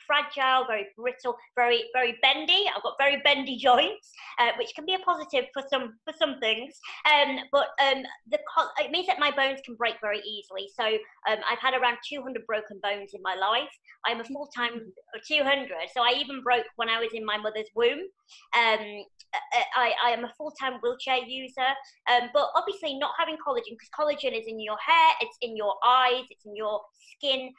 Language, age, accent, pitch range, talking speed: English, 30-49, British, 220-285 Hz, 190 wpm